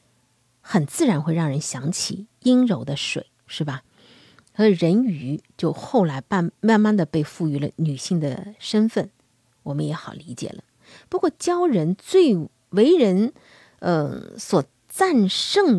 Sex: female